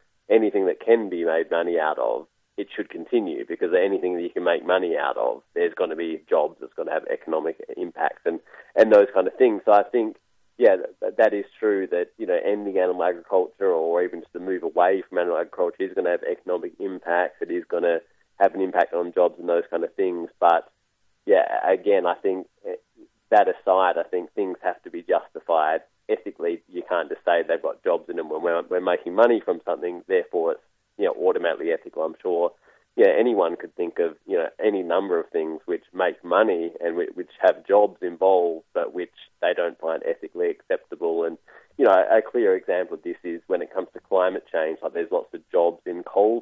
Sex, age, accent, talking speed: male, 20-39, Australian, 215 wpm